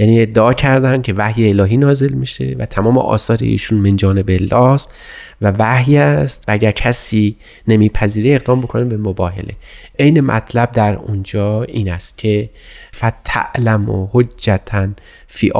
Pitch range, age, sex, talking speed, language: 105-125 Hz, 30-49, male, 130 wpm, Persian